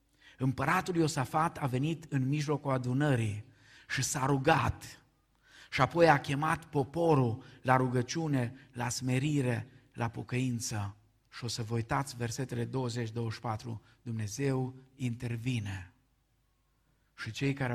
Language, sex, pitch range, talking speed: Romanian, male, 125-165 Hz, 110 wpm